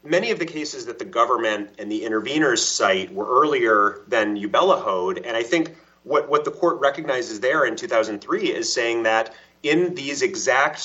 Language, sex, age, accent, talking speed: English, male, 30-49, American, 185 wpm